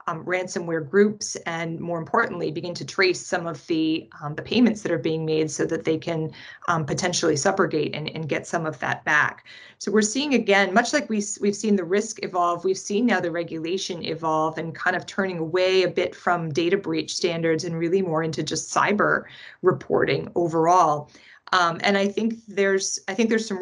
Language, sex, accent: English, female, American